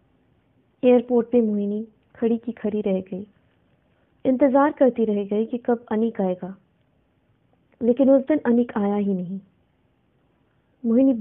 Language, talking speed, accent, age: Hindi, 130 wpm, native, 20-39